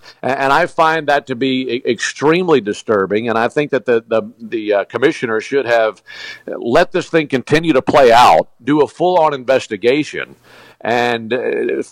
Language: English